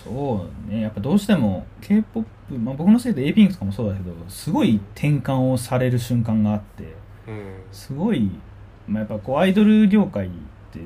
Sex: male